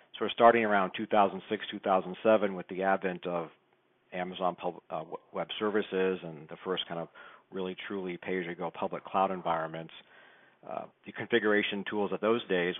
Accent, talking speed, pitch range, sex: American, 150 wpm, 85-100 Hz, male